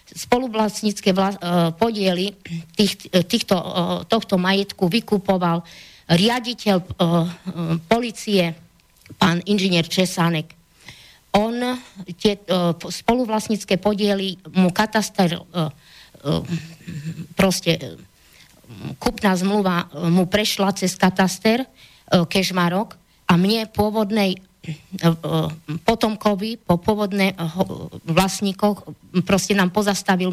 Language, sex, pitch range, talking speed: Slovak, female, 175-210 Hz, 70 wpm